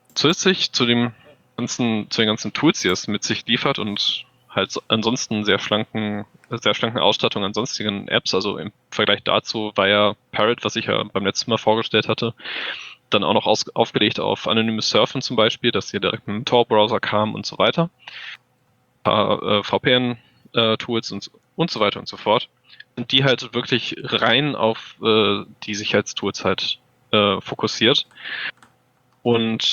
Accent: German